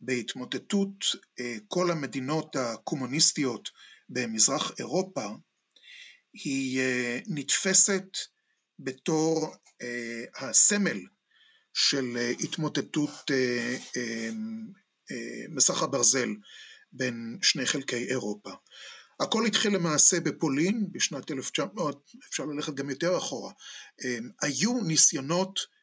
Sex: male